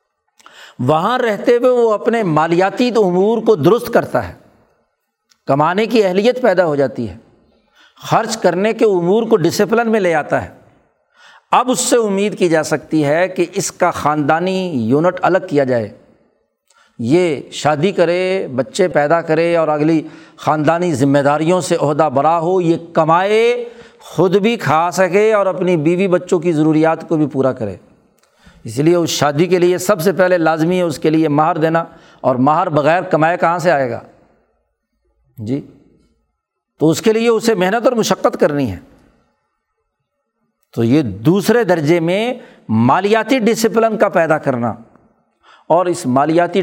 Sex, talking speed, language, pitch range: male, 160 wpm, Urdu, 155-210 Hz